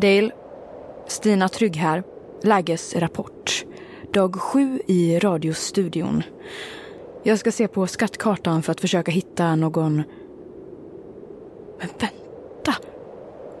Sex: female